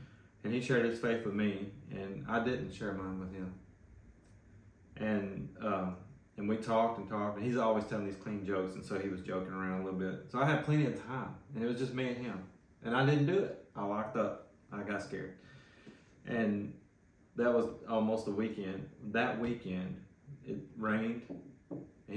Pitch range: 95-115 Hz